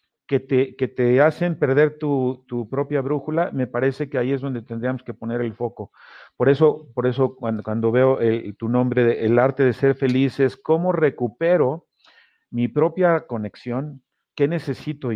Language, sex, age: Spanish, male, 50-69